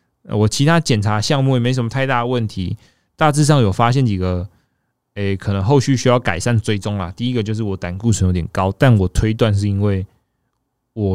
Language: Chinese